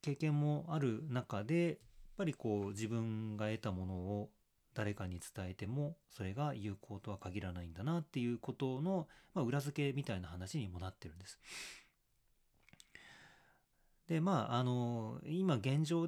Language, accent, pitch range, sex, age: Japanese, native, 100-150 Hz, male, 40-59